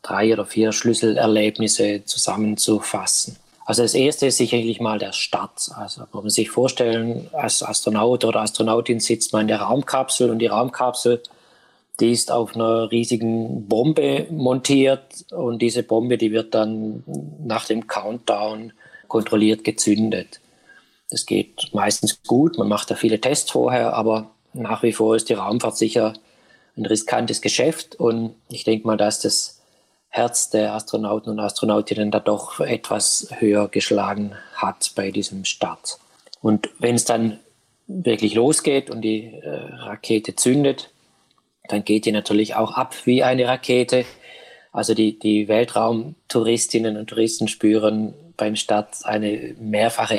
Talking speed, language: 145 wpm, German